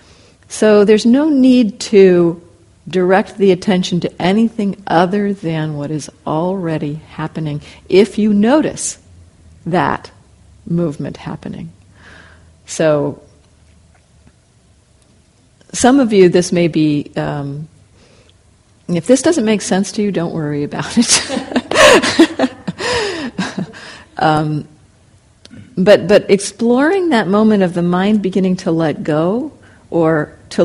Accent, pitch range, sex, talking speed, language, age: American, 145-205 Hz, female, 110 wpm, English, 50-69